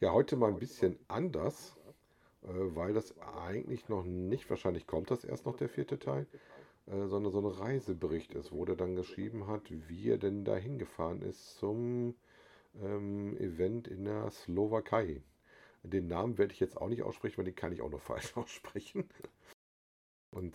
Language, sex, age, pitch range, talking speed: German, male, 50-69, 85-105 Hz, 165 wpm